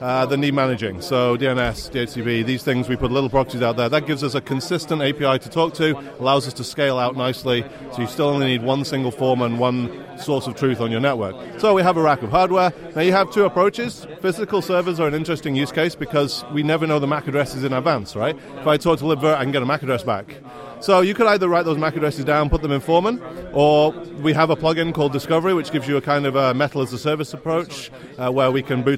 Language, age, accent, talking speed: English, 30-49, British, 255 wpm